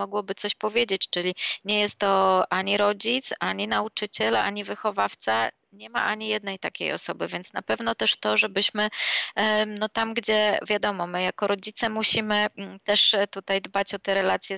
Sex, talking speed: female, 160 wpm